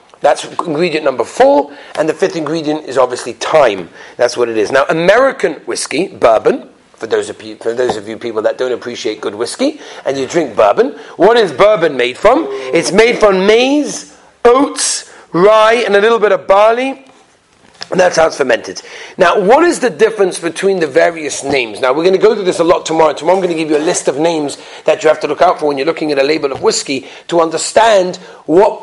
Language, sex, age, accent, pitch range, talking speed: English, male, 40-59, British, 170-230 Hz, 215 wpm